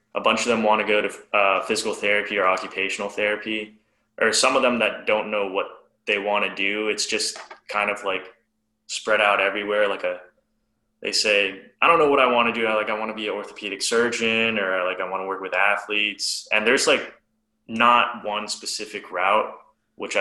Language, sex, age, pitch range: English, male, 20-39, 95-110 Hz